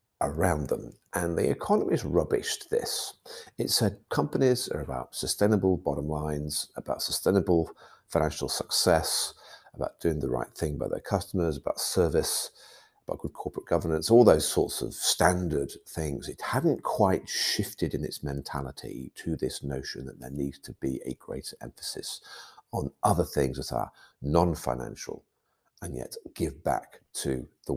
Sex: male